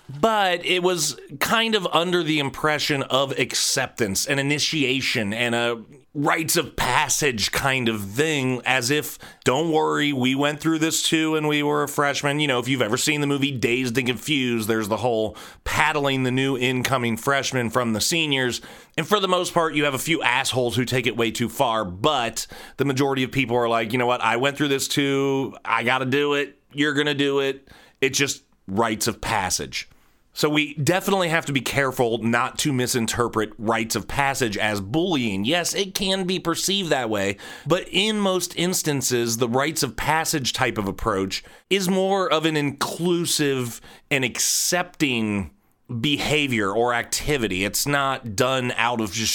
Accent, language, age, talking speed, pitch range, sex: American, English, 30-49, 185 wpm, 120-150 Hz, male